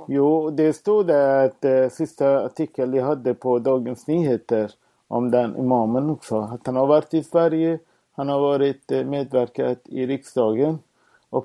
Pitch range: 125-150 Hz